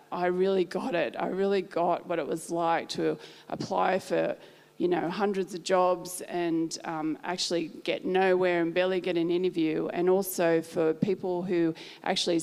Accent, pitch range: Australian, 170-195 Hz